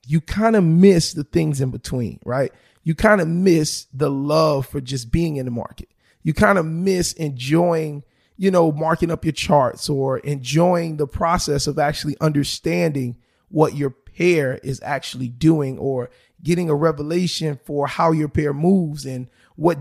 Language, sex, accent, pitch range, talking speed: English, male, American, 145-175 Hz, 170 wpm